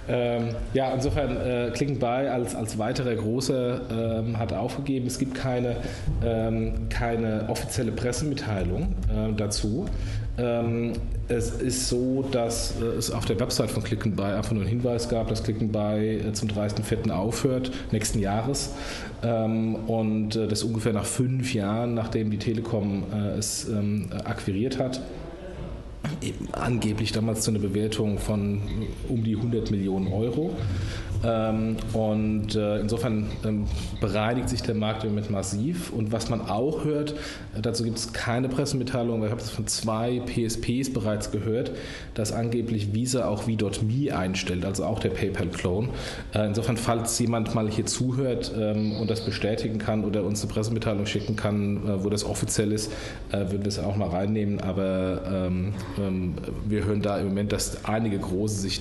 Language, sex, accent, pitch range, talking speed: German, male, German, 105-115 Hz, 150 wpm